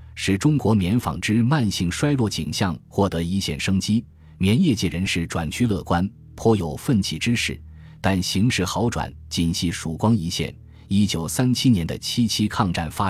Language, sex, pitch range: Chinese, male, 85-110 Hz